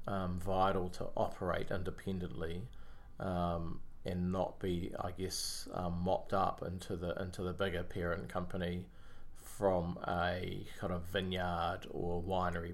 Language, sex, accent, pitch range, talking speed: English, male, Australian, 90-100 Hz, 130 wpm